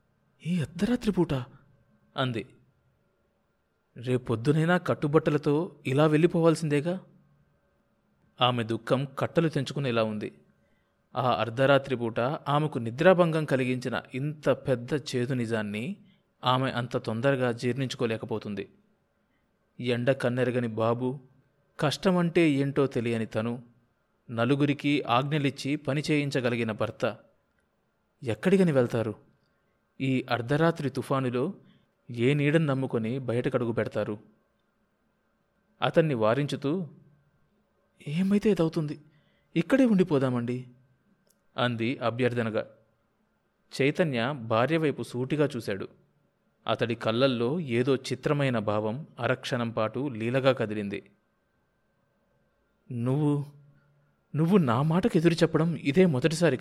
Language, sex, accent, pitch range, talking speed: Telugu, male, native, 120-155 Hz, 75 wpm